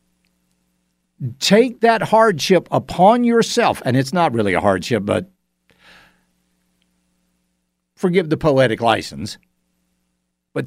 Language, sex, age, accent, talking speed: English, male, 60-79, American, 95 wpm